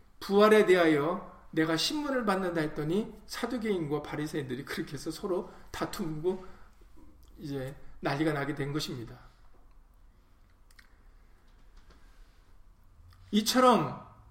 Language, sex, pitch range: Korean, male, 155-210 Hz